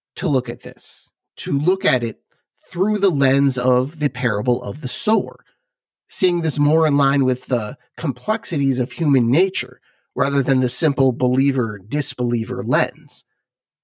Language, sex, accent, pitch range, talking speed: English, male, American, 125-150 Hz, 150 wpm